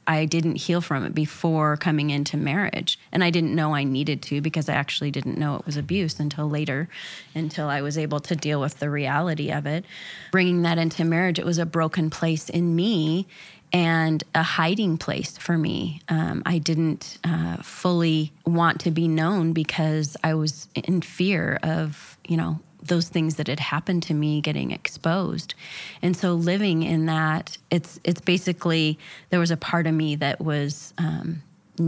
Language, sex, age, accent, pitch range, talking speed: English, female, 20-39, American, 150-170 Hz, 185 wpm